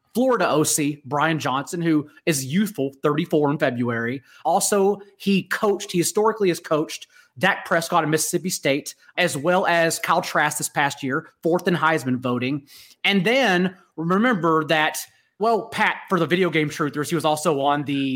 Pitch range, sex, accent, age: 150-190 Hz, male, American, 30-49